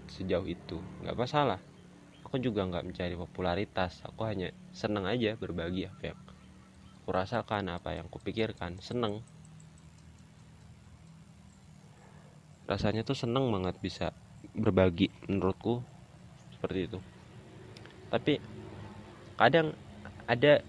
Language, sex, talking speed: Indonesian, male, 95 wpm